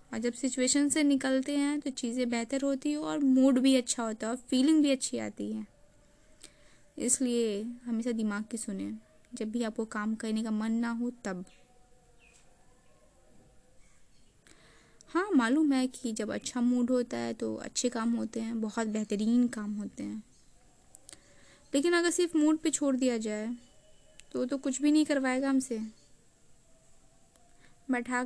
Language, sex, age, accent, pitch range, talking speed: Hindi, female, 20-39, native, 220-265 Hz, 155 wpm